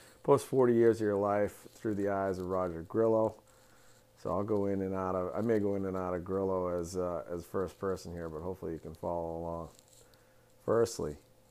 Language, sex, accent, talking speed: English, male, American, 210 wpm